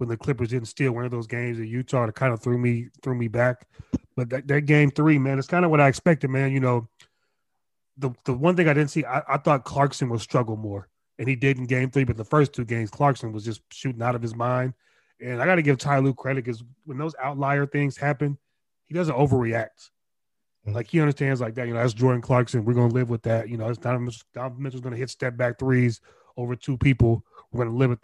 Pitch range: 120-140 Hz